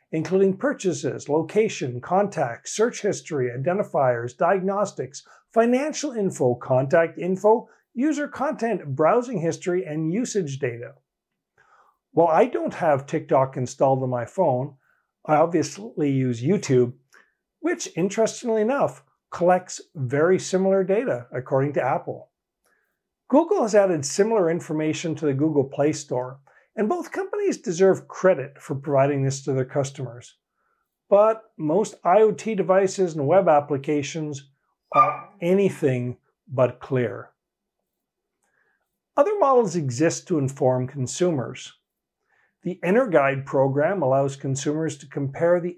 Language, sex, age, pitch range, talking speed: English, male, 50-69, 140-210 Hz, 115 wpm